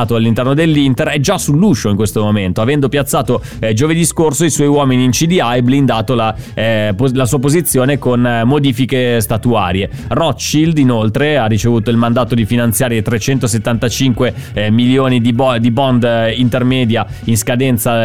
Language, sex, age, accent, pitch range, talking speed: Italian, male, 20-39, native, 115-145 Hz, 160 wpm